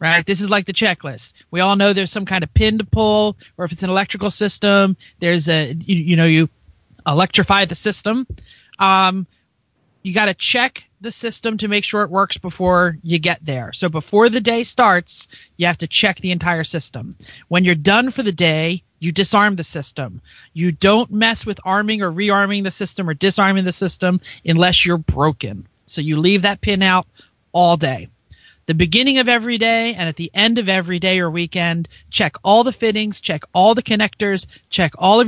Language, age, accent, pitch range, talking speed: English, 30-49, American, 170-210 Hz, 200 wpm